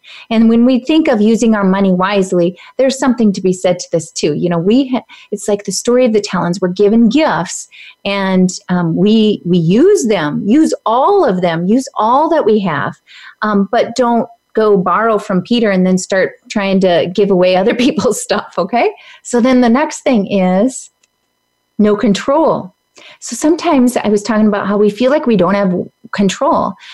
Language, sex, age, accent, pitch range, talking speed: English, female, 30-49, American, 190-255 Hz, 190 wpm